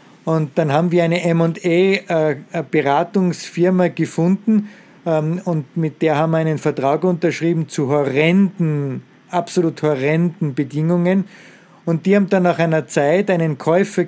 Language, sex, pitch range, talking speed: English, male, 155-180 Hz, 130 wpm